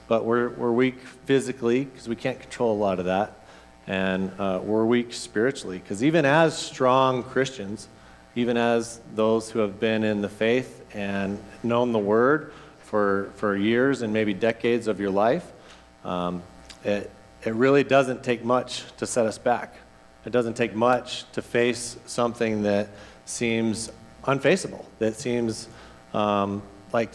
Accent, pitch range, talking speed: American, 95-125 Hz, 155 wpm